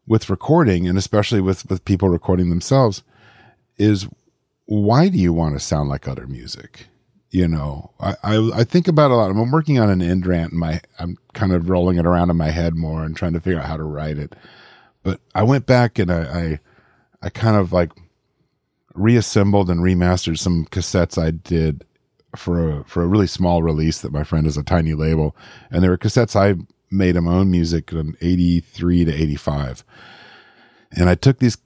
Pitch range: 80-105 Hz